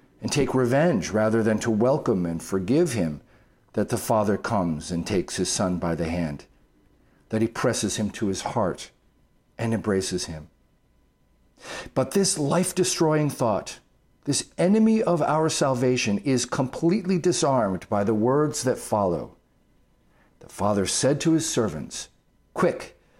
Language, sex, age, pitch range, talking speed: English, male, 50-69, 105-145 Hz, 140 wpm